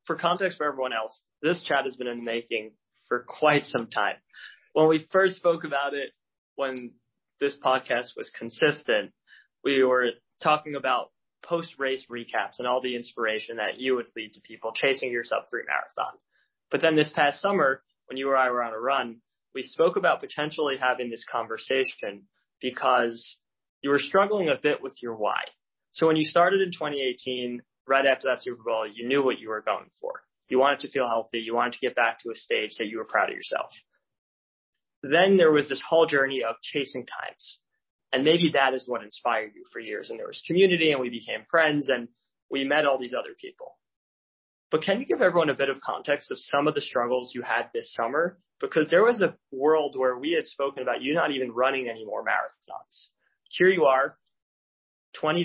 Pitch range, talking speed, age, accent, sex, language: 120-160 Hz, 200 wpm, 20-39, American, male, English